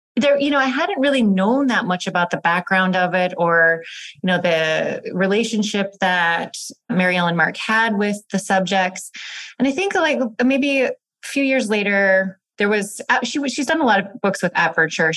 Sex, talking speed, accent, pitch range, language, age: female, 185 wpm, American, 165-220 Hz, English, 30-49